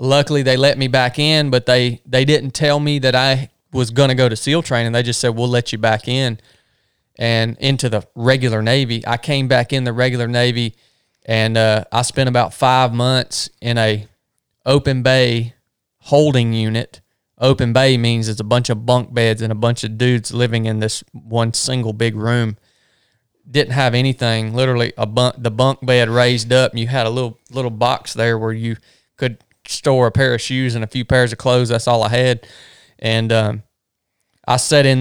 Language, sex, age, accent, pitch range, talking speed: English, male, 20-39, American, 115-130 Hz, 200 wpm